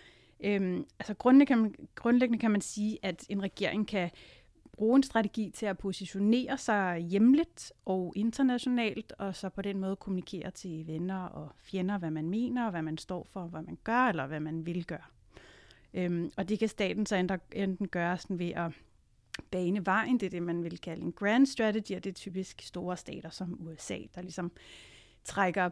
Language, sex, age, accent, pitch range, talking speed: Danish, female, 30-49, native, 170-210 Hz, 195 wpm